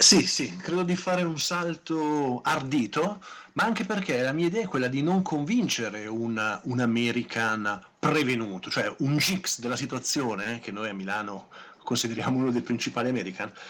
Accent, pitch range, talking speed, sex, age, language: native, 115-155 Hz, 165 wpm, male, 50-69, Italian